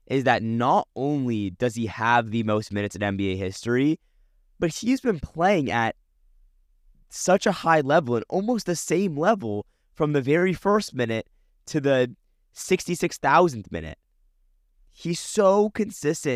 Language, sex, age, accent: English, male, 20-39, American